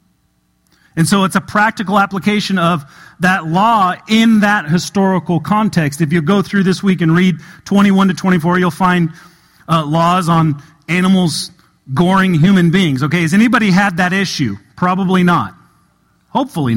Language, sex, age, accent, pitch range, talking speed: English, male, 40-59, American, 170-200 Hz, 150 wpm